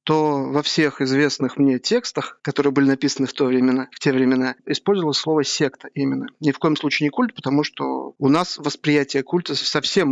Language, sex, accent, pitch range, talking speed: Russian, male, native, 135-170 Hz, 190 wpm